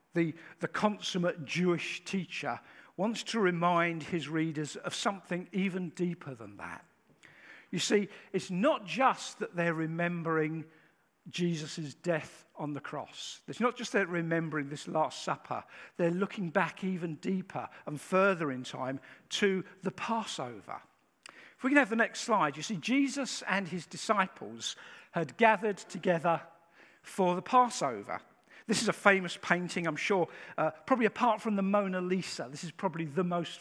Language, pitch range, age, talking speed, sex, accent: English, 160-200 Hz, 50-69, 155 wpm, male, British